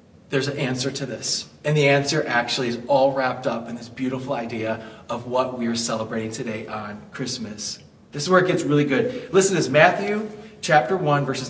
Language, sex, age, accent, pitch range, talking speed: English, male, 30-49, American, 125-160 Hz, 205 wpm